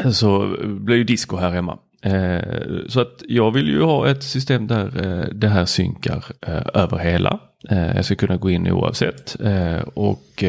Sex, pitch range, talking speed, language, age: male, 95-125 Hz, 160 wpm, Swedish, 30-49